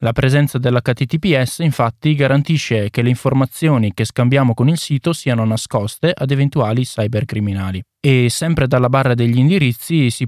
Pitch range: 115-145 Hz